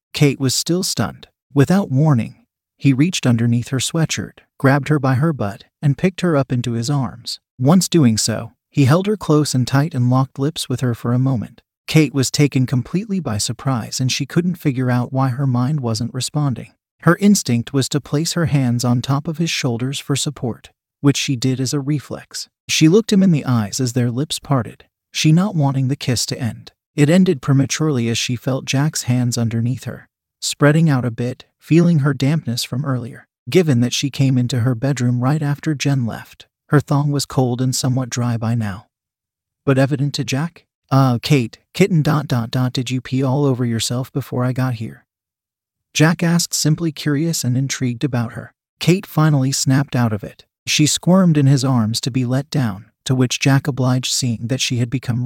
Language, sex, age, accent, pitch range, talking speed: English, male, 40-59, American, 125-150 Hz, 200 wpm